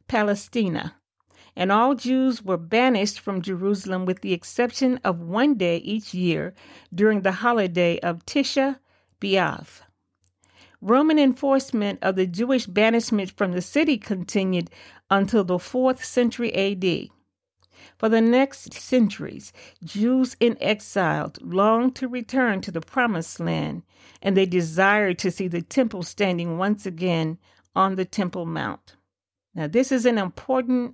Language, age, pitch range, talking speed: English, 50-69, 180-245 Hz, 135 wpm